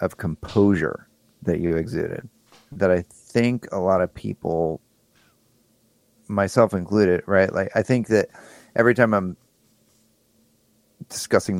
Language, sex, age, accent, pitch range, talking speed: English, male, 30-49, American, 80-105 Hz, 120 wpm